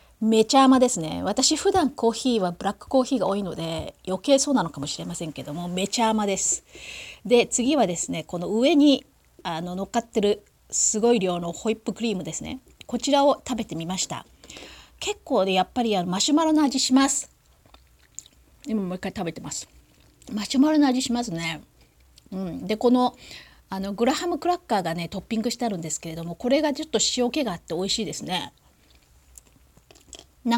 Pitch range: 175-235 Hz